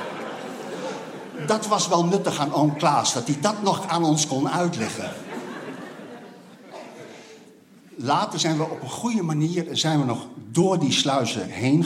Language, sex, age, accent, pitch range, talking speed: Dutch, male, 50-69, Dutch, 150-225 Hz, 145 wpm